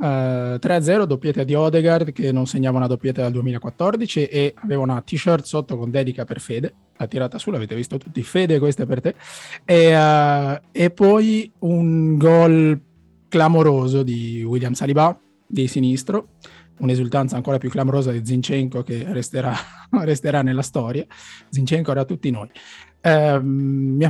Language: Italian